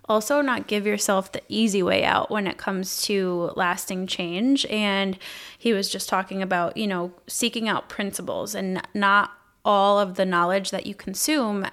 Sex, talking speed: female, 175 wpm